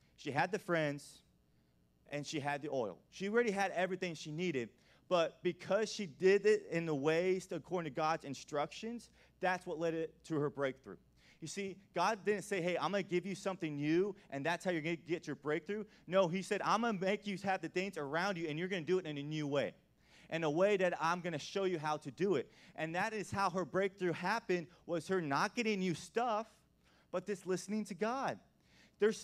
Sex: male